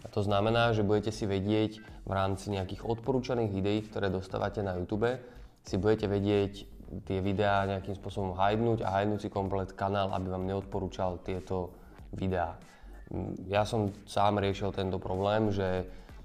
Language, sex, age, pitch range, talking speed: Slovak, male, 20-39, 95-105 Hz, 150 wpm